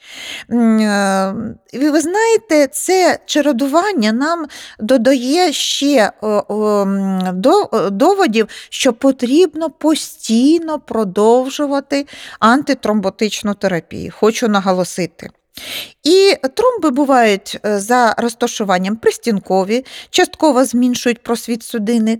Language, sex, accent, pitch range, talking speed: Ukrainian, female, native, 220-330 Hz, 70 wpm